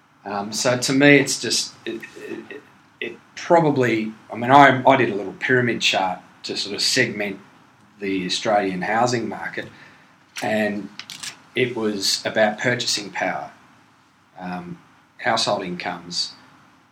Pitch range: 95-130 Hz